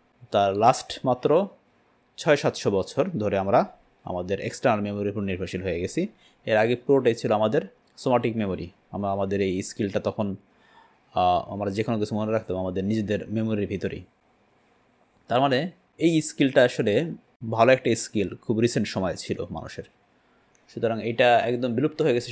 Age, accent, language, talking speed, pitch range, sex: 30-49, native, Bengali, 150 wpm, 100-130 Hz, male